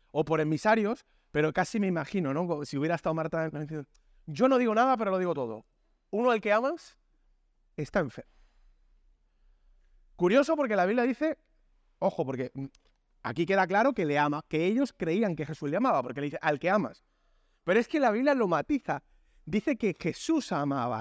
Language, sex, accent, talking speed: Spanish, male, Spanish, 185 wpm